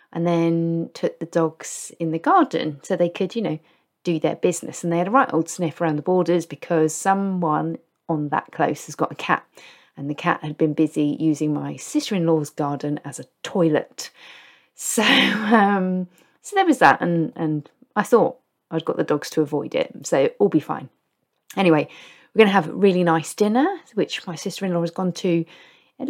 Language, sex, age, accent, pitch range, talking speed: English, female, 30-49, British, 160-210 Hz, 195 wpm